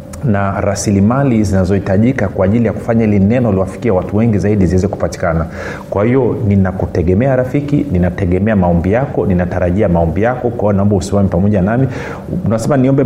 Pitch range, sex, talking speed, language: 95-115 Hz, male, 145 wpm, Swahili